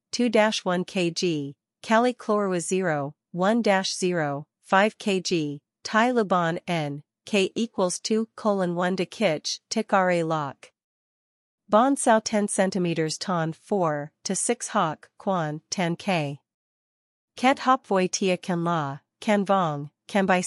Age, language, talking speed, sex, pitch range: 40-59, Vietnamese, 130 wpm, female, 170-210 Hz